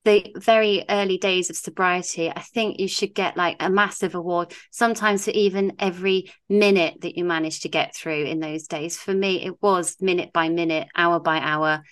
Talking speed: 195 wpm